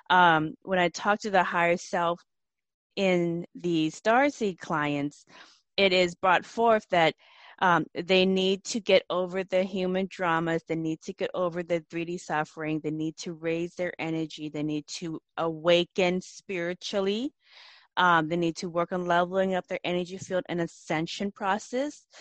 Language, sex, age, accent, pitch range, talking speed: English, female, 20-39, American, 160-195 Hz, 160 wpm